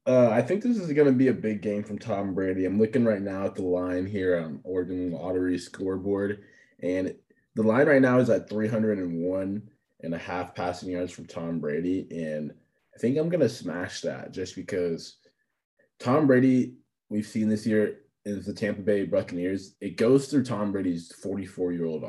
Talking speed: 185 wpm